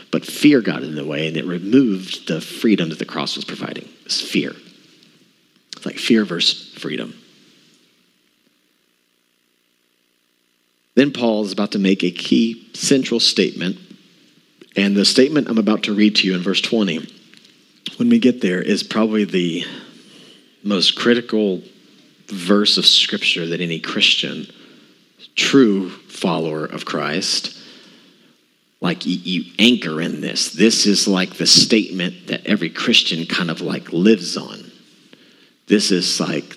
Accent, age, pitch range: American, 40-59, 80-105 Hz